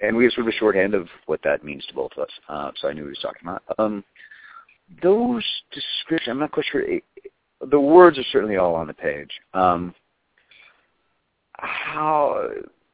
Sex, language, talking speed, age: male, English, 200 wpm, 50-69